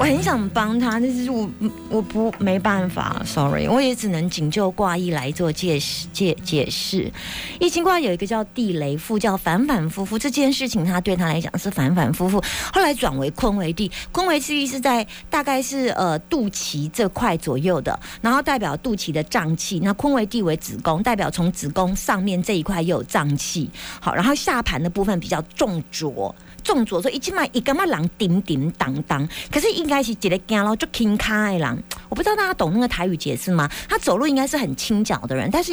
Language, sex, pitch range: Chinese, female, 175-265 Hz